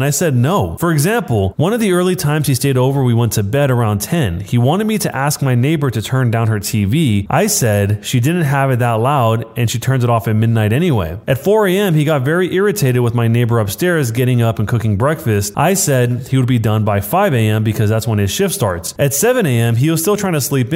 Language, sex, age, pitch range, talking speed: English, male, 30-49, 115-155 Hz, 245 wpm